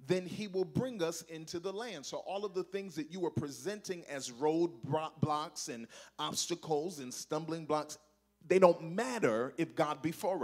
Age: 40-59